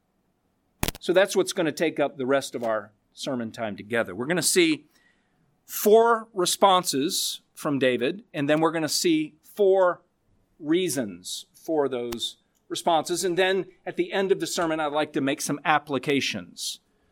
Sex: male